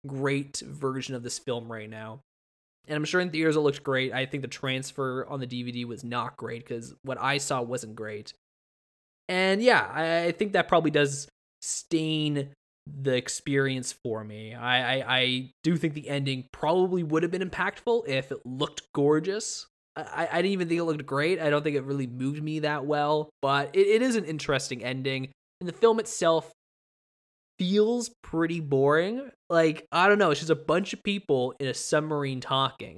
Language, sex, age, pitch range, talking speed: English, male, 20-39, 130-160 Hz, 190 wpm